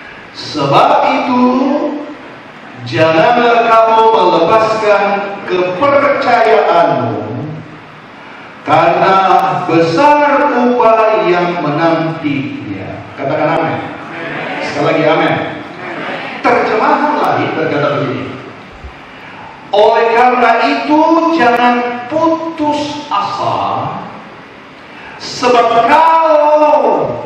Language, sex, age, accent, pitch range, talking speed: Indonesian, male, 40-59, native, 175-285 Hz, 60 wpm